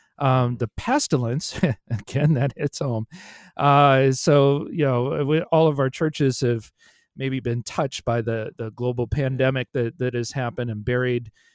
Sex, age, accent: male, 40-59, American